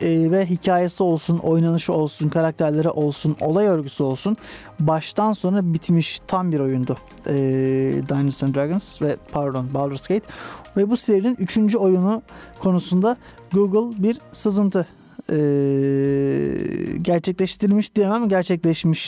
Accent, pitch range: native, 150-190 Hz